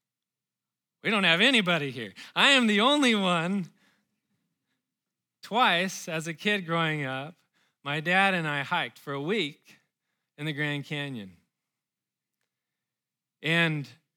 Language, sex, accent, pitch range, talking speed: English, male, American, 145-195 Hz, 125 wpm